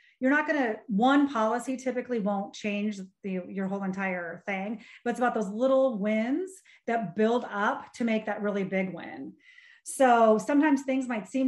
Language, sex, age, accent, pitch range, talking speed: English, female, 30-49, American, 195-250 Hz, 180 wpm